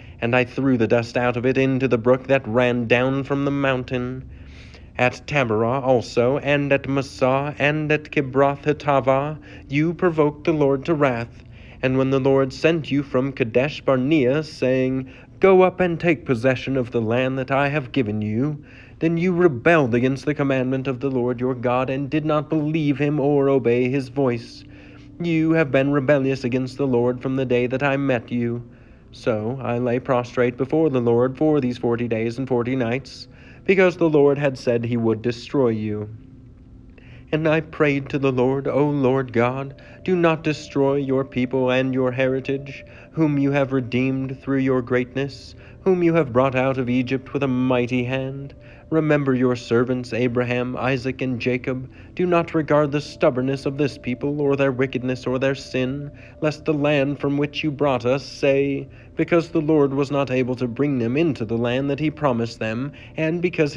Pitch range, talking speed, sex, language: 125-145 Hz, 185 wpm, male, English